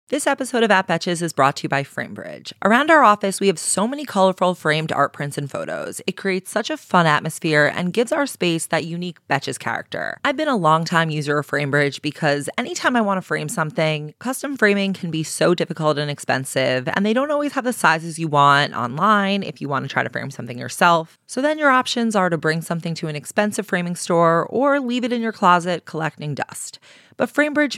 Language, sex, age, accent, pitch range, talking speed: English, female, 20-39, American, 150-200 Hz, 220 wpm